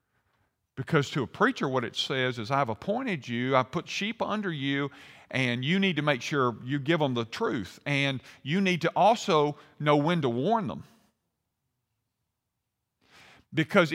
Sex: male